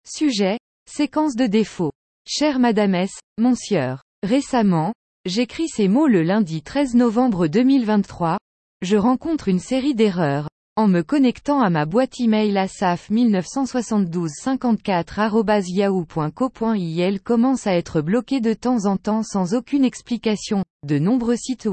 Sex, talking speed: female, 120 wpm